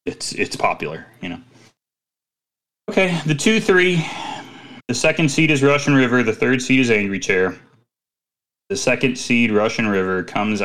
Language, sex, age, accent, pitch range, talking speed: English, male, 30-49, American, 95-130 Hz, 150 wpm